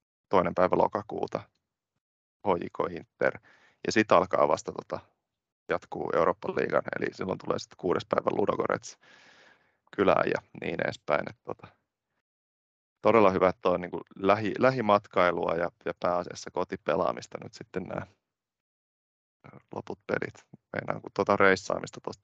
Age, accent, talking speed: 30-49, native, 120 wpm